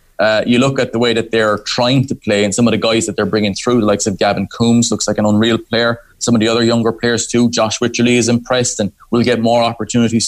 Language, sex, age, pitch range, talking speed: English, male, 20-39, 115-125 Hz, 270 wpm